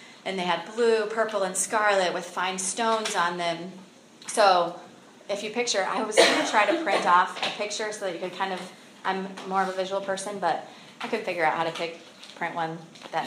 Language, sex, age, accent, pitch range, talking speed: English, female, 20-39, American, 175-205 Hz, 220 wpm